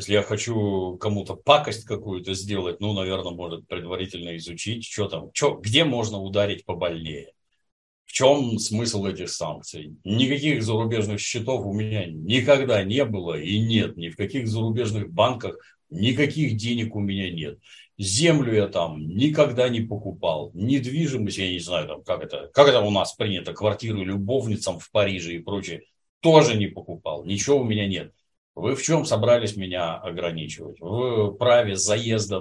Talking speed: 150 wpm